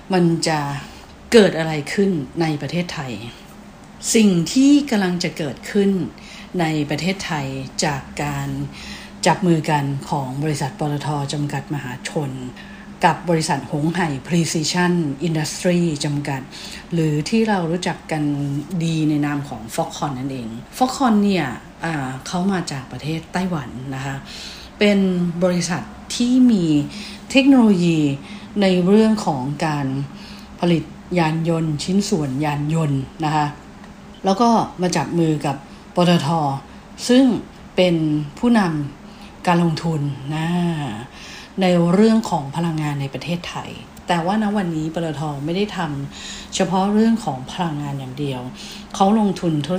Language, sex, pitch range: English, female, 150-200 Hz